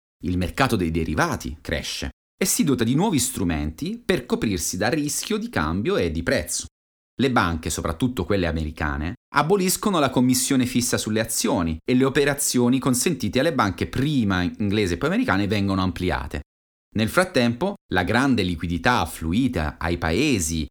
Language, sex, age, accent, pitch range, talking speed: Italian, male, 30-49, native, 80-120 Hz, 150 wpm